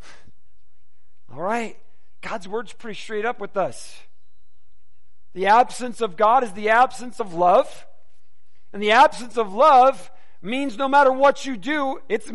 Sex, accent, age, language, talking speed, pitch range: male, American, 40-59, English, 145 wpm, 200-285 Hz